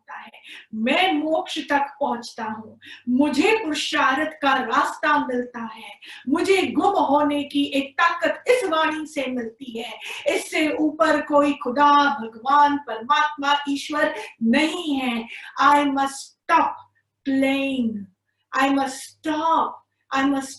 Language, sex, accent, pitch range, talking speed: Hindi, female, native, 245-290 Hz, 115 wpm